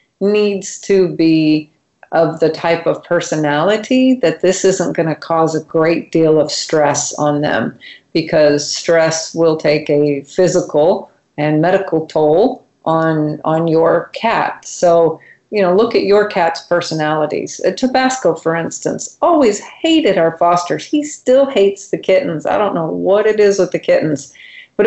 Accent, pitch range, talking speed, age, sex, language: American, 160-195 Hz, 150 wpm, 40-59, female, English